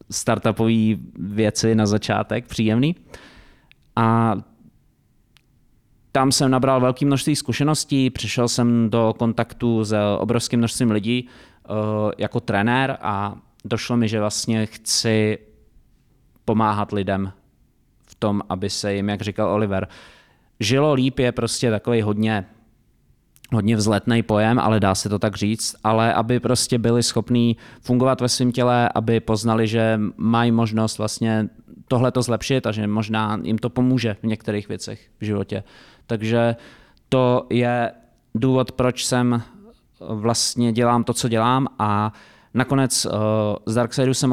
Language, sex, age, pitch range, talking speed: Czech, male, 20-39, 105-120 Hz, 130 wpm